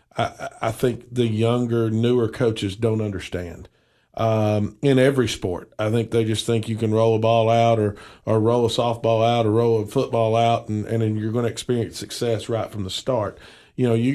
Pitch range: 110-120 Hz